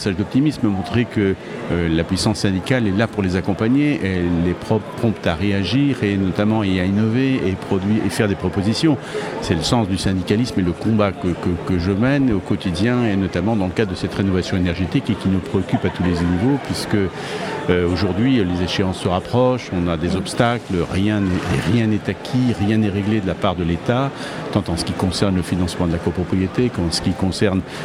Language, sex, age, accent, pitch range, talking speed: French, male, 50-69, French, 90-110 Hz, 215 wpm